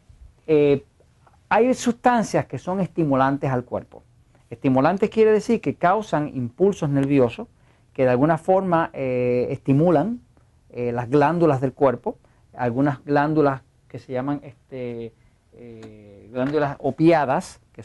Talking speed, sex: 120 wpm, male